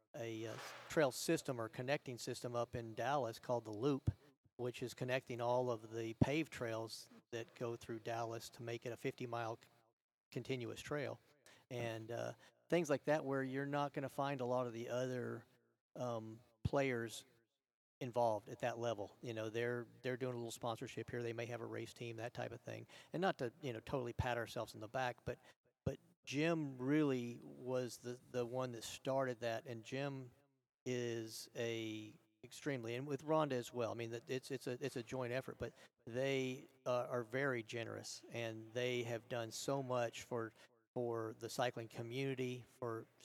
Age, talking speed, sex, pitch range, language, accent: 50-69, 185 wpm, male, 115-135 Hz, English, American